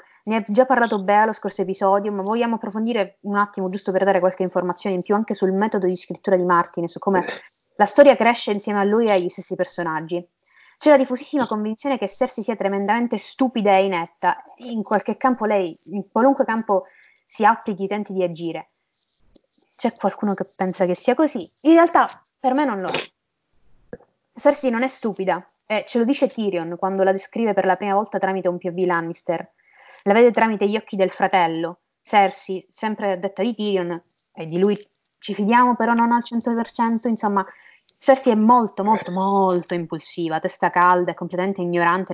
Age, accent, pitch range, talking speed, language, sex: 20-39, native, 180-230 Hz, 185 wpm, Italian, female